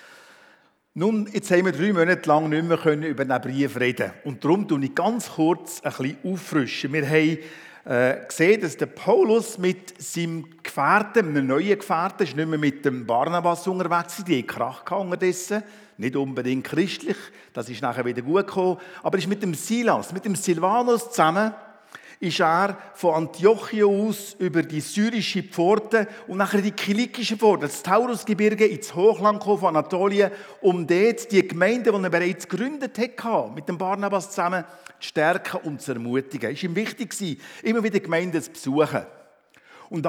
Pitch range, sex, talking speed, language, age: 165-210 Hz, male, 170 wpm, German, 50-69